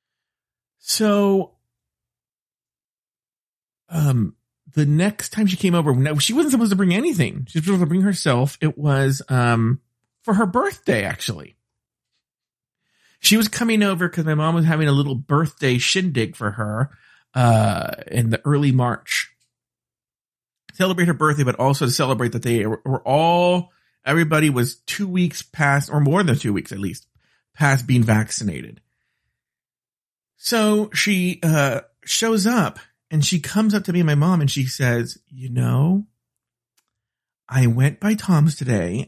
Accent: American